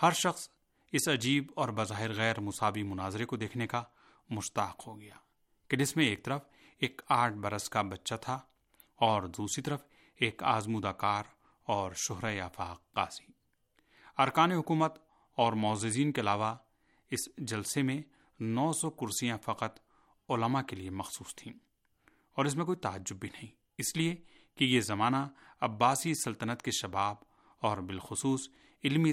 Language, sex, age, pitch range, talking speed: Urdu, male, 30-49, 105-140 Hz, 150 wpm